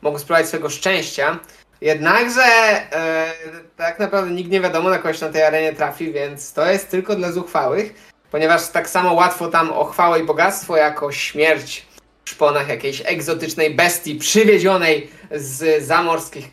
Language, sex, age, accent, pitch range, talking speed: Polish, male, 20-39, native, 150-195 Hz, 150 wpm